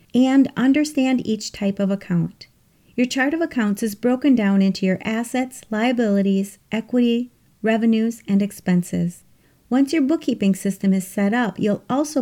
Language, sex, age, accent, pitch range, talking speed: English, female, 40-59, American, 195-245 Hz, 145 wpm